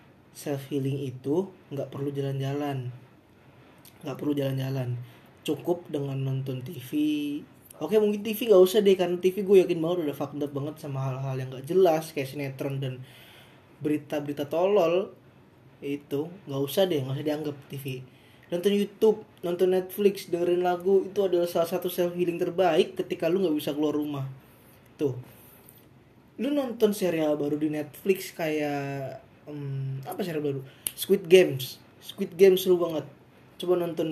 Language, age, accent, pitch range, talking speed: Indonesian, 20-39, native, 140-185 Hz, 145 wpm